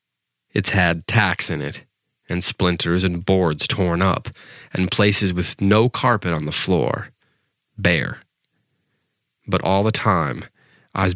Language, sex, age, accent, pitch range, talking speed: English, male, 20-39, American, 85-105 Hz, 135 wpm